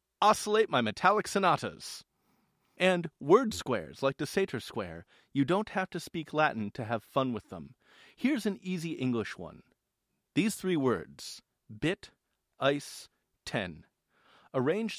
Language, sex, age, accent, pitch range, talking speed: English, male, 40-59, American, 120-185 Hz, 135 wpm